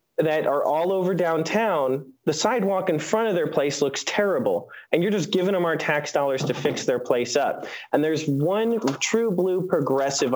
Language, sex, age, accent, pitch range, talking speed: English, male, 20-39, American, 140-210 Hz, 190 wpm